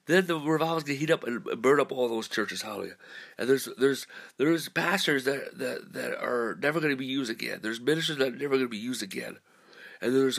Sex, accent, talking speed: male, American, 245 wpm